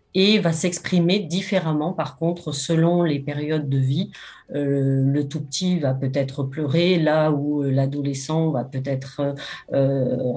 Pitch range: 145-180 Hz